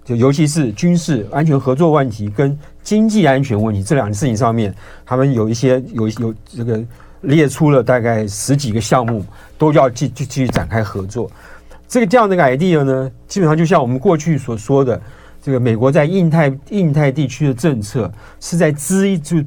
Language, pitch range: Chinese, 120-165 Hz